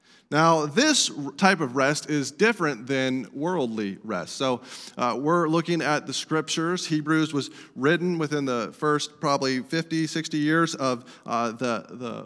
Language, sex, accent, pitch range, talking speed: English, male, American, 135-180 Hz, 150 wpm